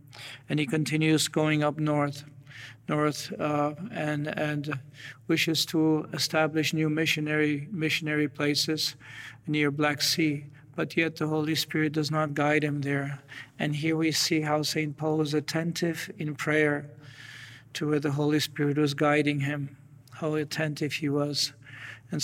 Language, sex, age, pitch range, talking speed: English, male, 50-69, 145-155 Hz, 145 wpm